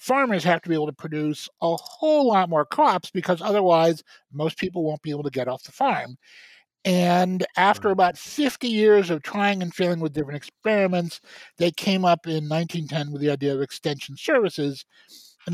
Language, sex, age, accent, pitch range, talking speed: English, male, 50-69, American, 155-200 Hz, 185 wpm